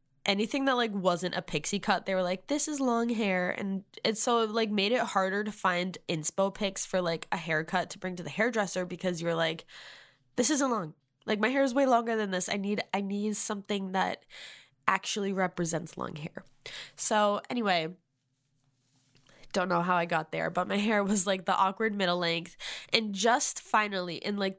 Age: 10-29